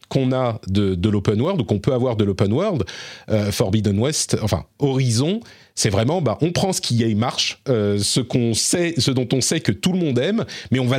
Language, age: French, 40-59